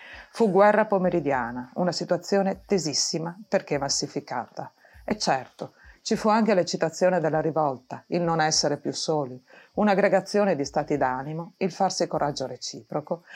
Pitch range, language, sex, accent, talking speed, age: 145-180 Hz, Italian, female, native, 130 wpm, 40-59